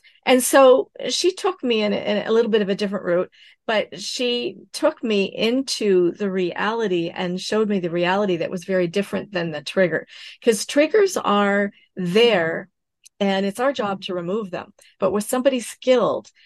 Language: English